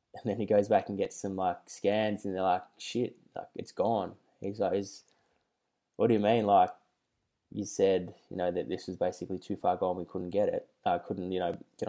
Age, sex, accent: 10-29, male, Australian